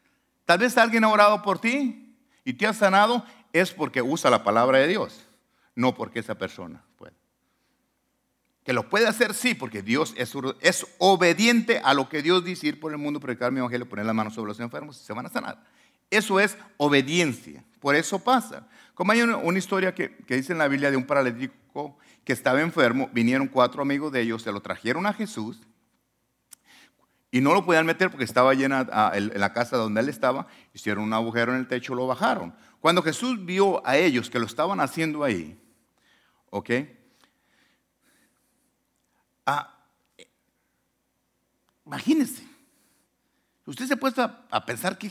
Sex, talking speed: male, 175 wpm